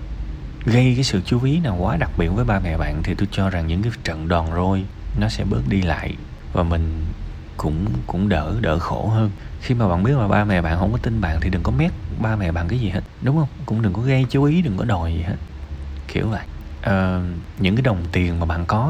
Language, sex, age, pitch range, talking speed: Vietnamese, male, 20-39, 80-100 Hz, 255 wpm